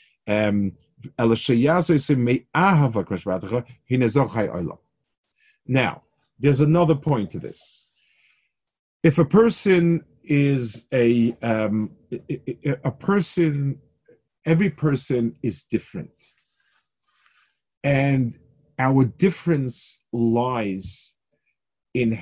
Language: English